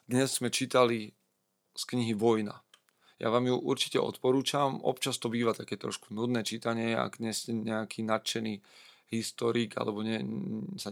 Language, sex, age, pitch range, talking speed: Slovak, male, 40-59, 105-115 Hz, 150 wpm